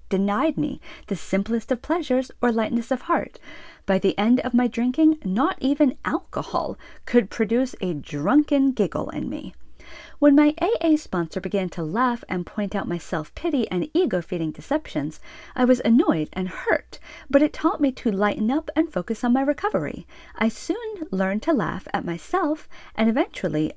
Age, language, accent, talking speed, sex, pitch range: 40-59, English, American, 170 wpm, female, 185-285 Hz